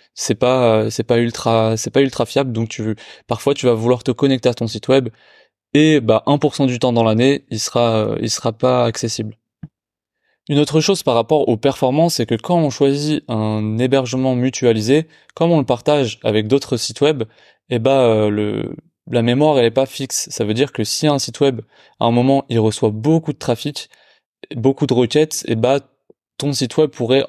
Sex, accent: male, French